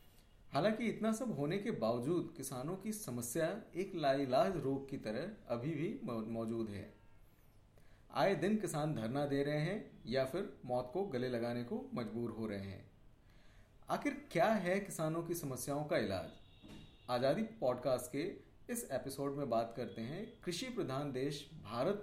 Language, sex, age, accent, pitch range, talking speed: Hindi, male, 40-59, native, 120-170 Hz, 155 wpm